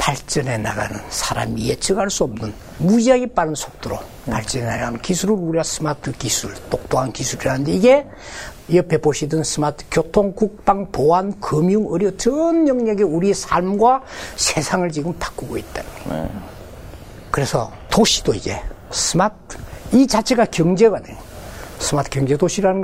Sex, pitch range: male, 120-195 Hz